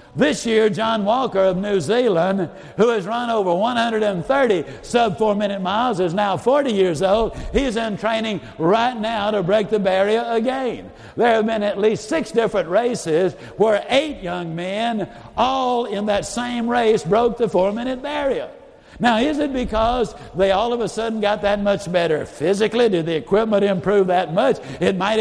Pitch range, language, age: 195-235 Hz, English, 60-79